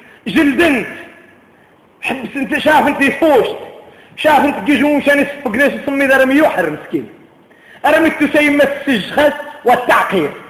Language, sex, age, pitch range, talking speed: Arabic, male, 40-59, 195-265 Hz, 80 wpm